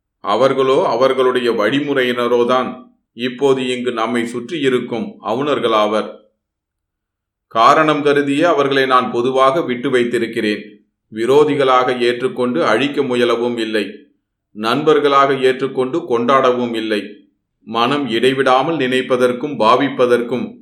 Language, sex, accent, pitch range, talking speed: Tamil, male, native, 115-140 Hz, 80 wpm